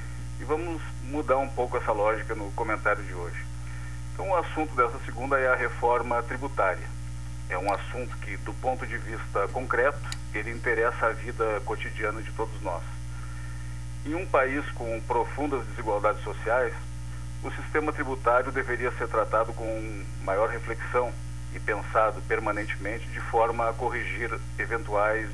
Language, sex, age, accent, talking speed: Portuguese, male, 50-69, Brazilian, 145 wpm